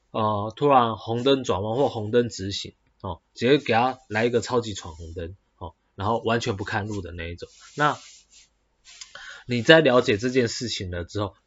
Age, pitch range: 20-39, 95-125 Hz